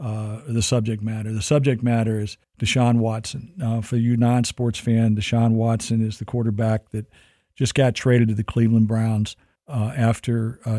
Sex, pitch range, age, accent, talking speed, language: male, 110-120 Hz, 50-69, American, 170 wpm, English